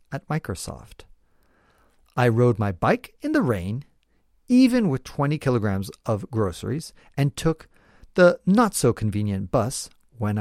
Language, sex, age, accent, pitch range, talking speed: English, male, 50-69, American, 100-165 Hz, 120 wpm